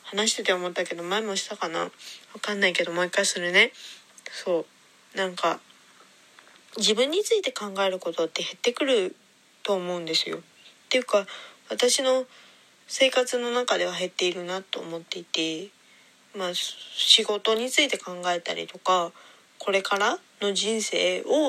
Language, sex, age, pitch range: Japanese, female, 20-39, 175-220 Hz